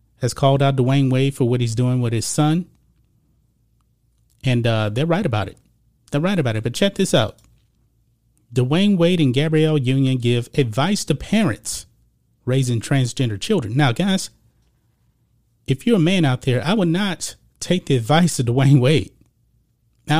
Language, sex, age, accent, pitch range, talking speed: English, male, 30-49, American, 120-160 Hz, 165 wpm